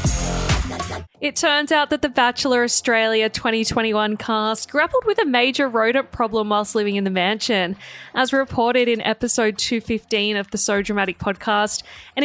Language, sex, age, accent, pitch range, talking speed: English, female, 20-39, Australian, 205-265 Hz, 150 wpm